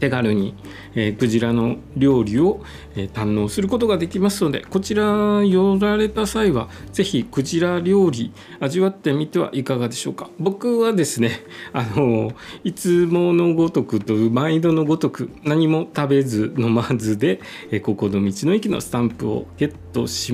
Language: Japanese